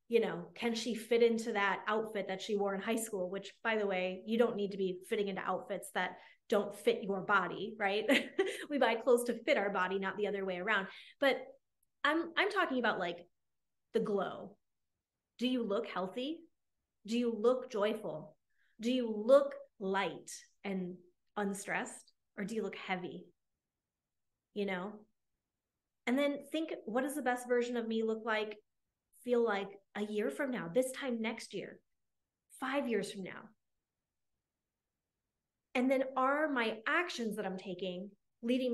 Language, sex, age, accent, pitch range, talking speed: English, female, 20-39, American, 205-260 Hz, 165 wpm